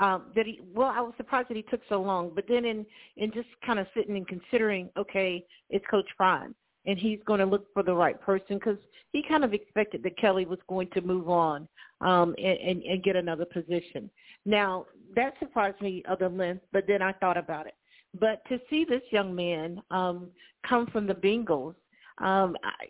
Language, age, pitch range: English, 50-69, 180-215 Hz